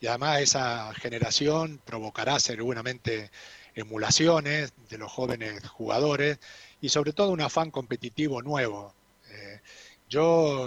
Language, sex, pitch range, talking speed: Spanish, male, 115-145 Hz, 110 wpm